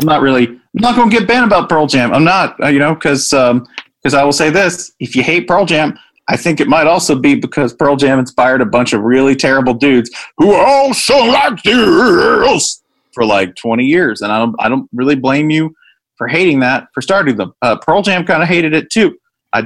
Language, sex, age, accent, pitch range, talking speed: English, male, 30-49, American, 130-200 Hz, 230 wpm